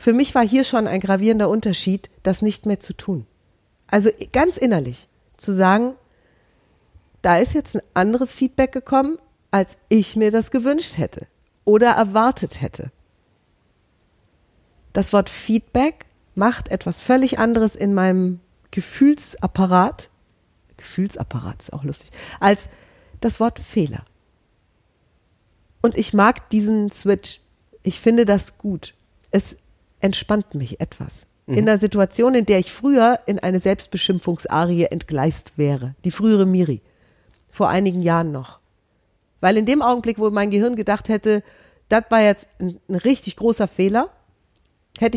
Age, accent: 40-59, German